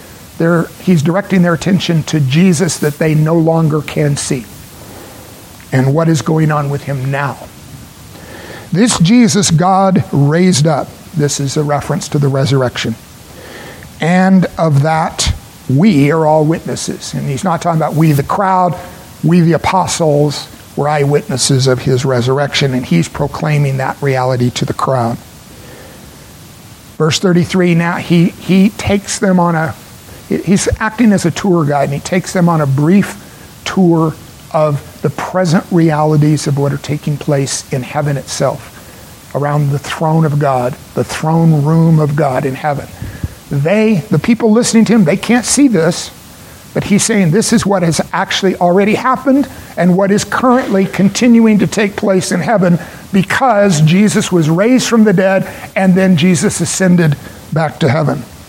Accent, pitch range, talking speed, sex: American, 145-190 Hz, 160 wpm, male